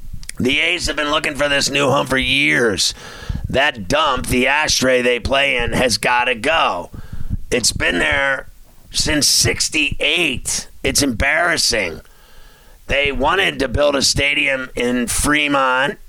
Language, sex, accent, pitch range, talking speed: English, male, American, 115-140 Hz, 140 wpm